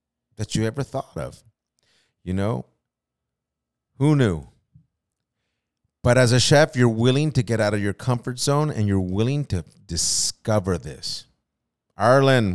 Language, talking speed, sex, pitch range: English, 140 wpm, male, 90-125 Hz